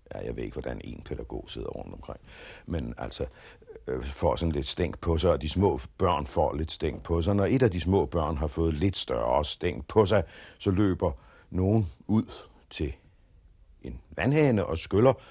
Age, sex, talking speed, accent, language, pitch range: 60-79, male, 195 wpm, native, Danish, 80-120 Hz